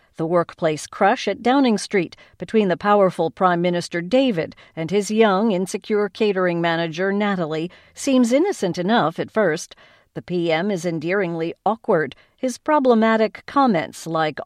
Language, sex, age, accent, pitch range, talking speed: English, female, 50-69, American, 165-225 Hz, 135 wpm